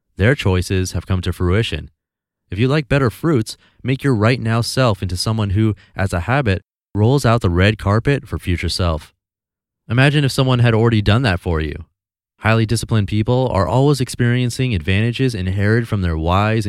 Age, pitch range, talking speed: 30-49, 90-115 Hz, 180 wpm